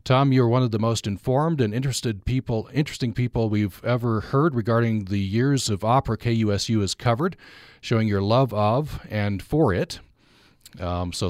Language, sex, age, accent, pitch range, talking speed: English, male, 40-59, American, 95-120 Hz, 170 wpm